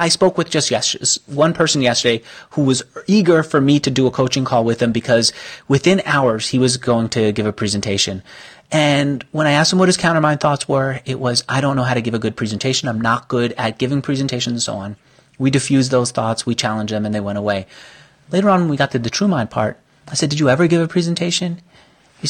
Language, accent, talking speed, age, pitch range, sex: English, American, 240 wpm, 30-49, 115-160 Hz, male